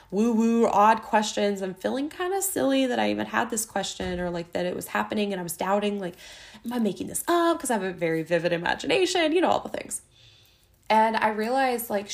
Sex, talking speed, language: female, 230 wpm, English